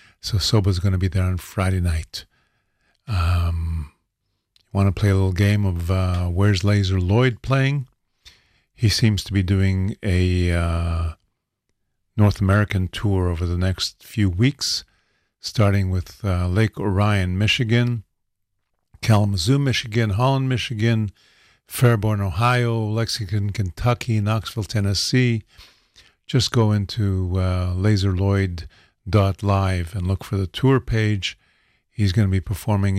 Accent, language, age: American, English, 50-69